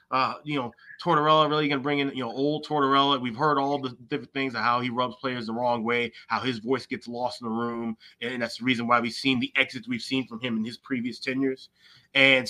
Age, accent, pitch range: 20-39, American, 115-155 Hz